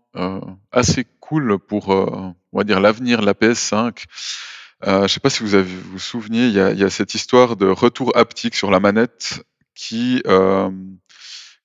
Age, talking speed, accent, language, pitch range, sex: 20-39, 195 wpm, French, French, 95-120 Hz, male